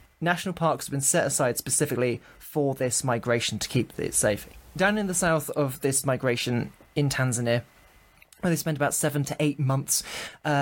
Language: English